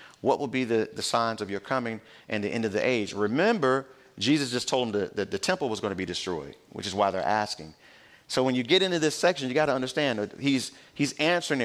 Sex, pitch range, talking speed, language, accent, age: male, 100-130 Hz, 245 wpm, English, American, 40-59